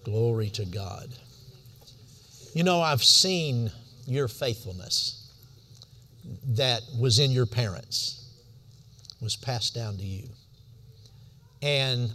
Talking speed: 100 wpm